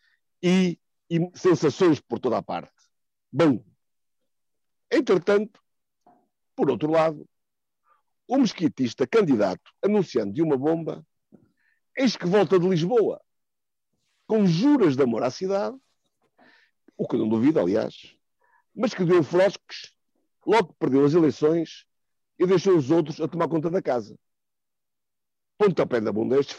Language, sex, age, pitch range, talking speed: Portuguese, male, 50-69, 150-200 Hz, 130 wpm